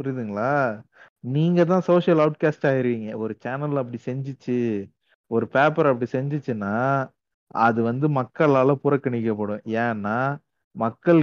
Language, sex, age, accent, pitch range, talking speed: Tamil, male, 30-49, native, 120-150 Hz, 100 wpm